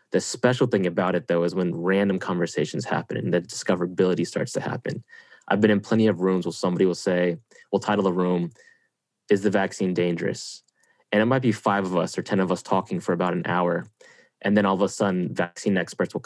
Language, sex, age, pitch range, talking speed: English, male, 20-39, 90-110 Hz, 220 wpm